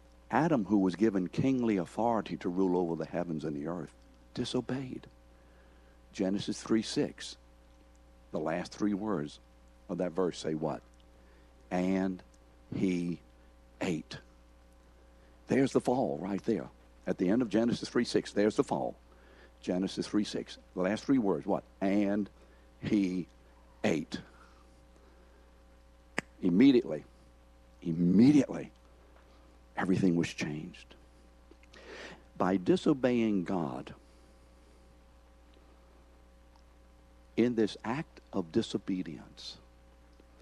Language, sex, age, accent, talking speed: English, male, 60-79, American, 100 wpm